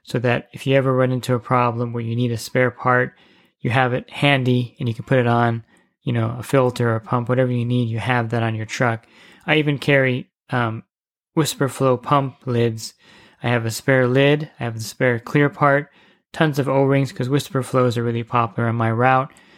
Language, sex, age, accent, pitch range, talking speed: English, male, 20-39, American, 120-135 Hz, 220 wpm